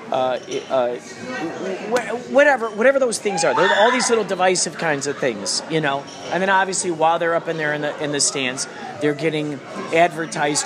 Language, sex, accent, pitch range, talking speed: English, male, American, 150-195 Hz, 185 wpm